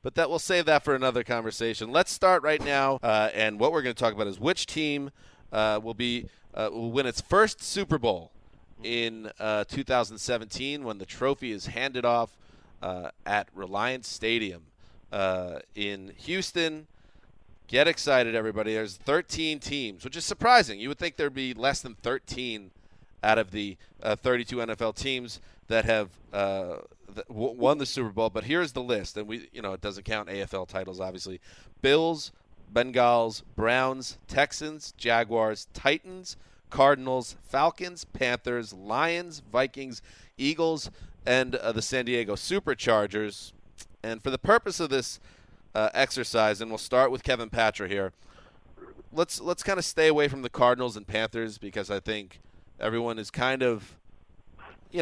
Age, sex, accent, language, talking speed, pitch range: 30-49, male, American, English, 160 wpm, 105-135 Hz